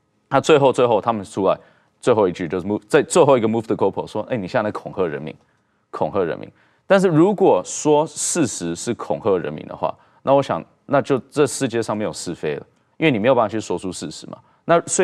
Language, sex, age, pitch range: Chinese, male, 20-39, 105-150 Hz